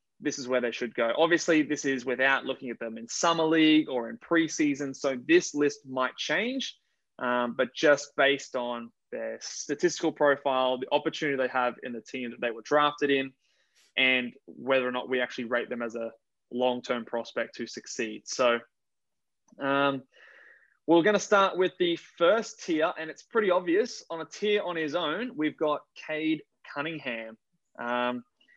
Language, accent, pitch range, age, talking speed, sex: English, Australian, 125-155 Hz, 20-39, 175 wpm, male